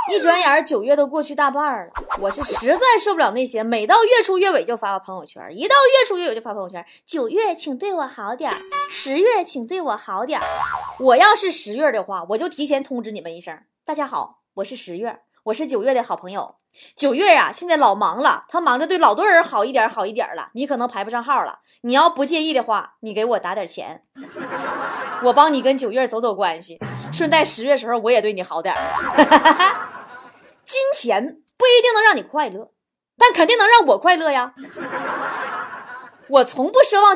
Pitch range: 230-360 Hz